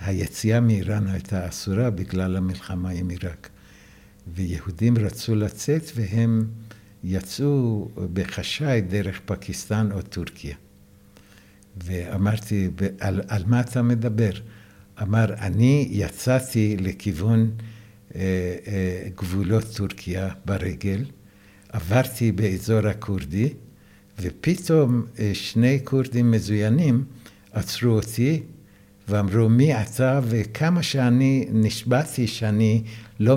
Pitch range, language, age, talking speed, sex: 100-115 Hz, Hebrew, 60-79, 90 wpm, male